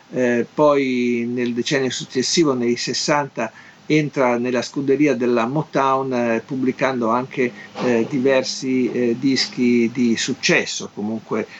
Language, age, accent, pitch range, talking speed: Italian, 50-69, native, 120-145 Hz, 115 wpm